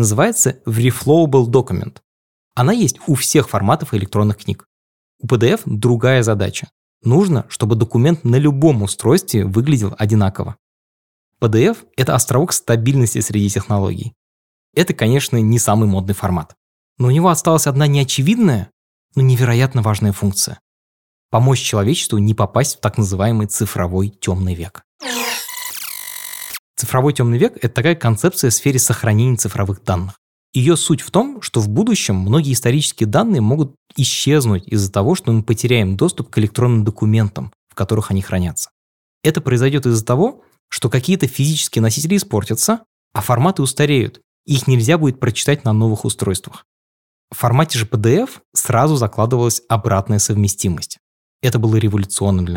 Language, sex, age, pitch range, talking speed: Russian, male, 20-39, 100-135 Hz, 140 wpm